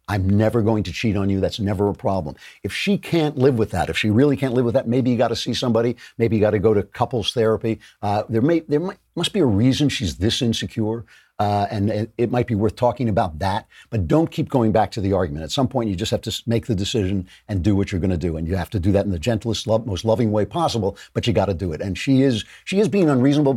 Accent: American